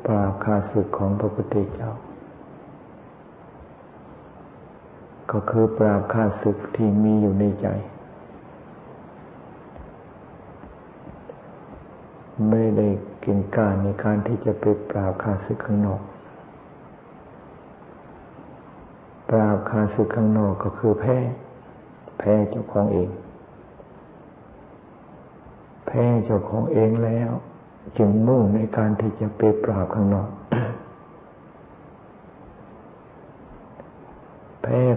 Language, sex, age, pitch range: Thai, male, 60-79, 105-115 Hz